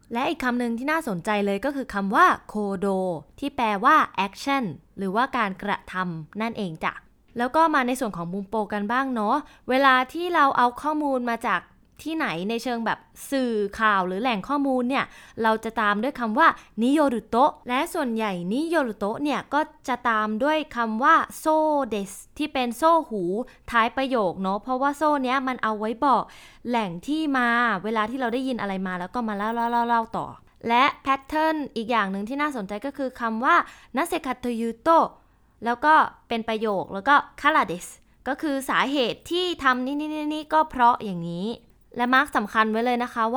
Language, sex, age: Thai, female, 20-39